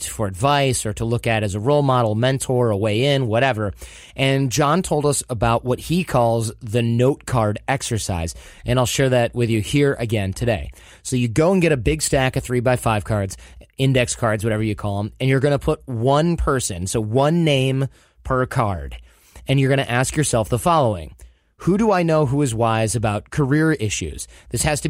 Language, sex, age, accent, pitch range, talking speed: English, male, 30-49, American, 115-145 Hz, 210 wpm